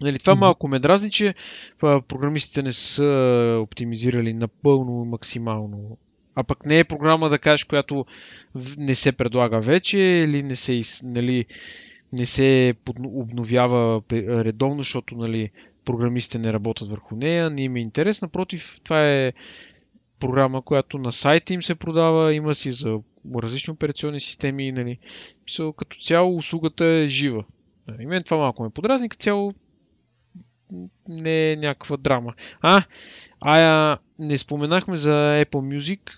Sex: male